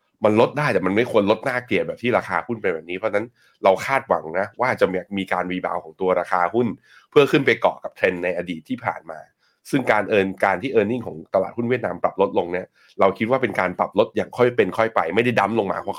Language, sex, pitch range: Thai, male, 90-120 Hz